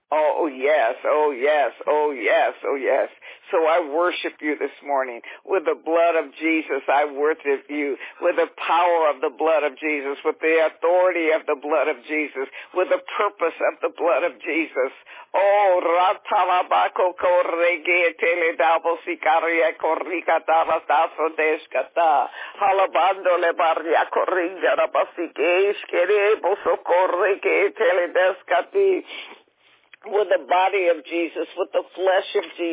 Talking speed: 90 wpm